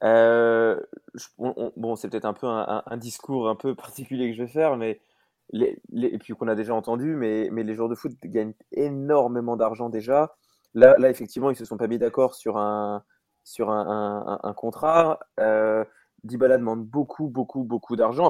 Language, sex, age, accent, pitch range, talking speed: French, male, 20-39, French, 110-130 Hz, 205 wpm